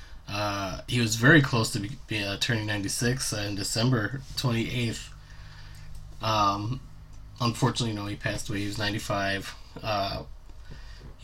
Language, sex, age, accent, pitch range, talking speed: English, male, 20-39, American, 95-130 Hz, 135 wpm